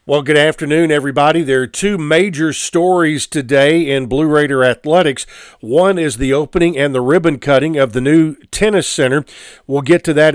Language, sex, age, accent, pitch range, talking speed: English, male, 50-69, American, 140-170 Hz, 180 wpm